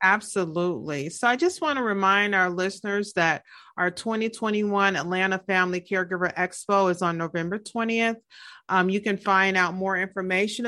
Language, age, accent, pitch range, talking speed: English, 40-59, American, 175-205 Hz, 150 wpm